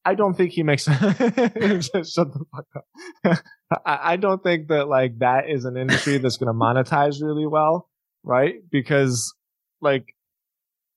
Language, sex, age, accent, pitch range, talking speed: English, male, 20-39, American, 125-155 Hz, 160 wpm